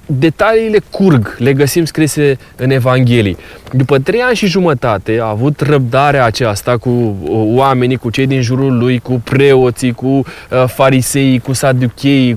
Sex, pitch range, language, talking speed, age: male, 120-145 Hz, Romanian, 140 wpm, 20-39